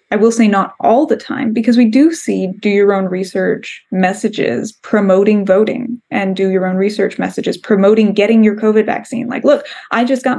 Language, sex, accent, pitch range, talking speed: English, female, American, 190-245 Hz, 195 wpm